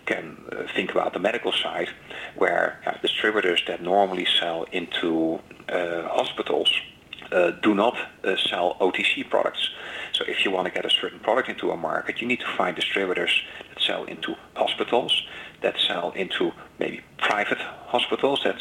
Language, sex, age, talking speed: English, male, 40-59, 165 wpm